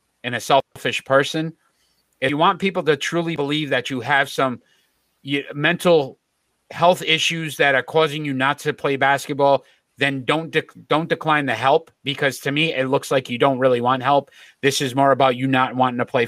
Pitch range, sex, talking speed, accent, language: 130-150 Hz, male, 190 wpm, American, English